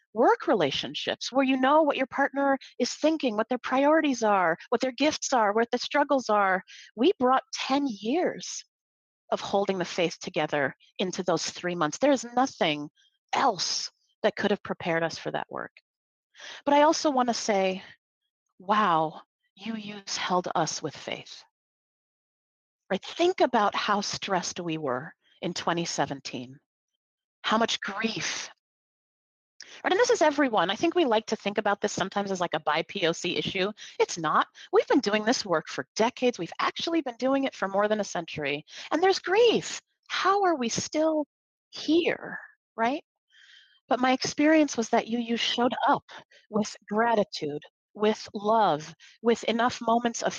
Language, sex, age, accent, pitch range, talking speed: English, female, 40-59, American, 185-275 Hz, 160 wpm